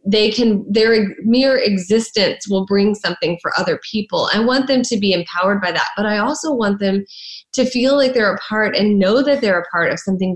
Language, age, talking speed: English, 20-39, 220 wpm